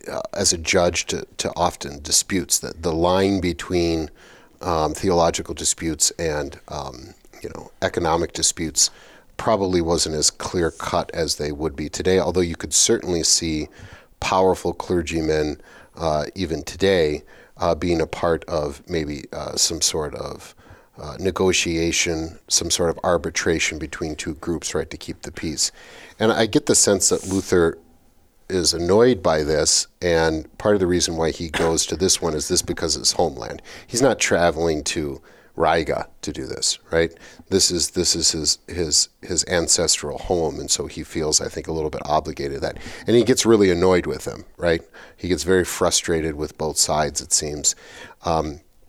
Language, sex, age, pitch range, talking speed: English, male, 40-59, 80-95 Hz, 170 wpm